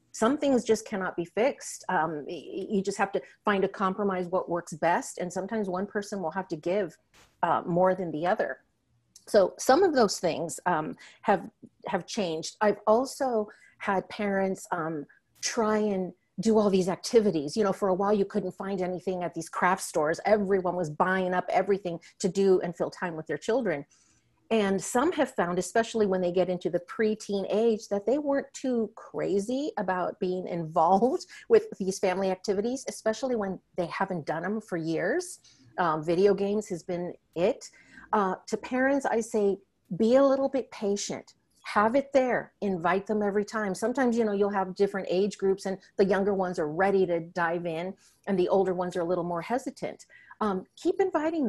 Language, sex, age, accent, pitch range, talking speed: English, female, 40-59, American, 185-220 Hz, 185 wpm